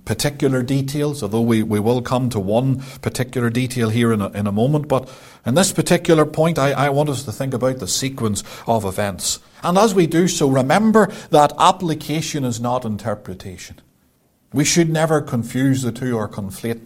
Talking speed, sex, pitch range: 180 wpm, male, 115-155 Hz